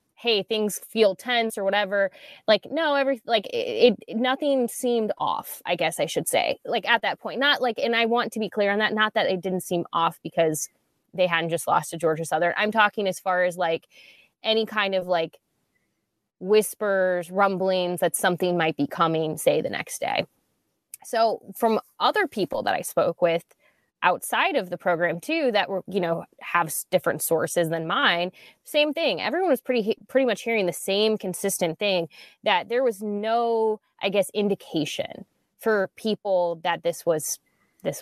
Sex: female